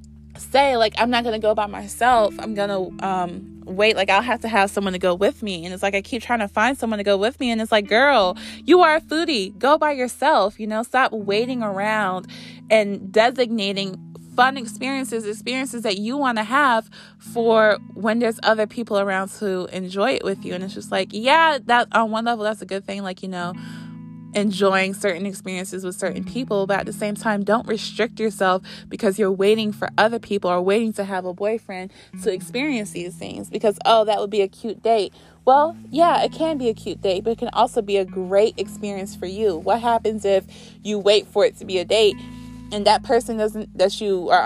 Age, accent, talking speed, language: 20-39, American, 220 wpm, English